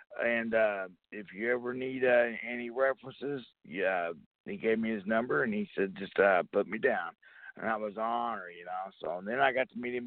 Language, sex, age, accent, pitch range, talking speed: English, male, 60-79, American, 115-165 Hz, 225 wpm